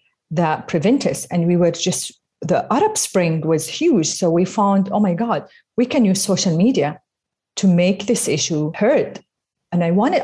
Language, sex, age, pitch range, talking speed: English, female, 40-59, 165-210 Hz, 180 wpm